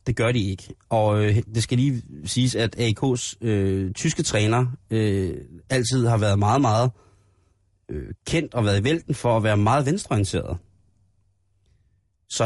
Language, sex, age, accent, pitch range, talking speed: Danish, male, 30-49, native, 100-125 Hz, 155 wpm